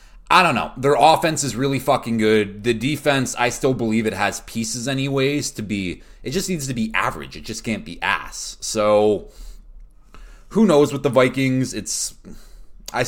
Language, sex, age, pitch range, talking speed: English, male, 20-39, 90-115 Hz, 180 wpm